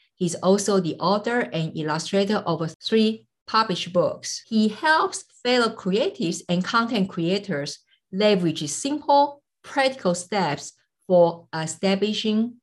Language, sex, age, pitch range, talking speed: English, female, 50-69, 165-220 Hz, 110 wpm